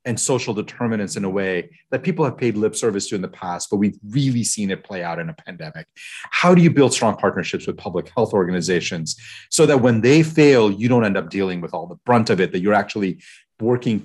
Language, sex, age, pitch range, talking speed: English, male, 40-59, 100-140 Hz, 240 wpm